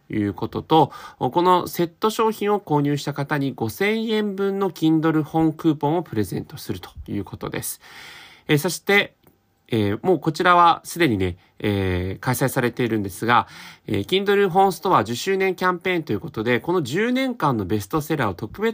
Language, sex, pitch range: Japanese, male, 110-180 Hz